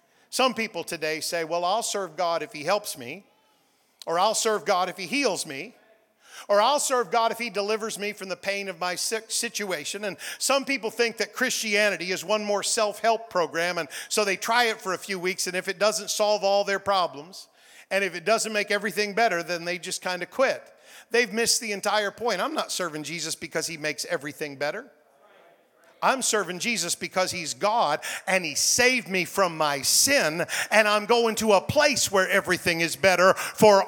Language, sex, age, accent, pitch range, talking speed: English, male, 50-69, American, 180-230 Hz, 200 wpm